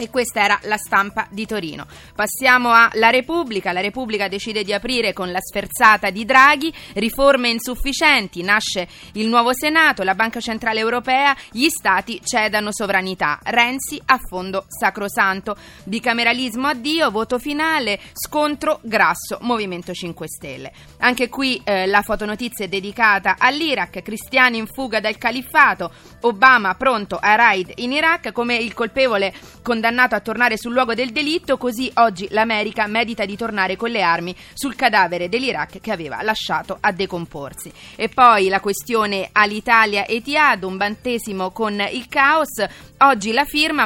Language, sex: Italian, female